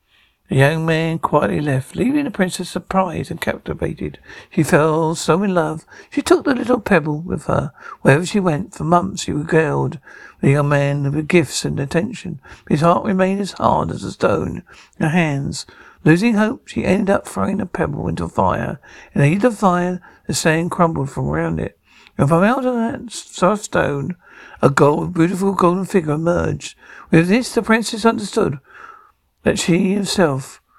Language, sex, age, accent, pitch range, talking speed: English, male, 60-79, British, 155-200 Hz, 175 wpm